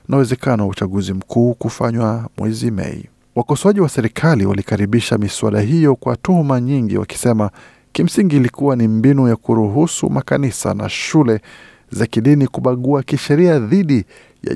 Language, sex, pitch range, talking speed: Swahili, male, 105-135 Hz, 130 wpm